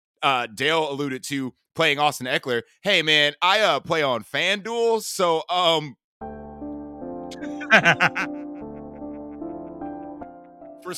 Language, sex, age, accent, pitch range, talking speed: English, male, 30-49, American, 135-195 Hz, 100 wpm